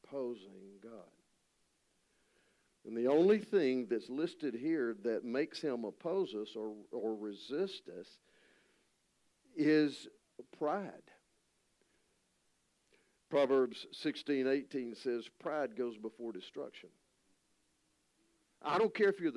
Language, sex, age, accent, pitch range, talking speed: English, male, 50-69, American, 110-135 Hz, 100 wpm